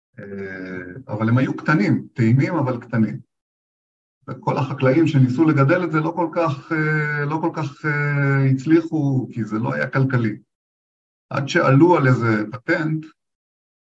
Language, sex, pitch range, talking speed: Hebrew, male, 110-145 Hz, 130 wpm